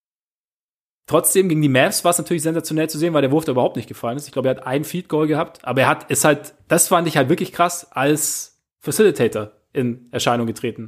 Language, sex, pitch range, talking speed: German, male, 135-165 Hz, 225 wpm